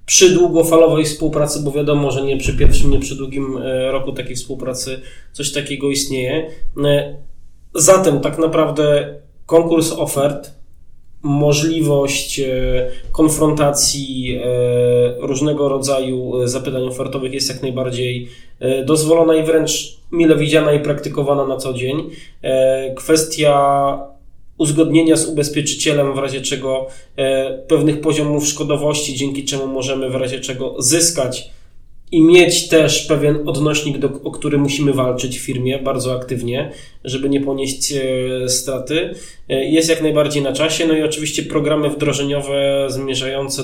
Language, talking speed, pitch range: Polish, 120 wpm, 130-150 Hz